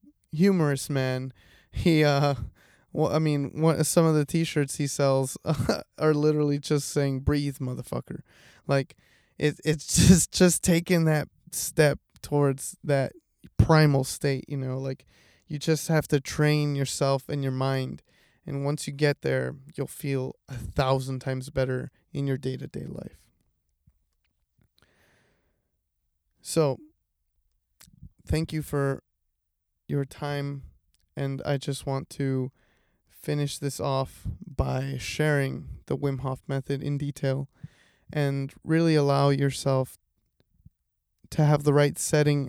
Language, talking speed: English, 130 wpm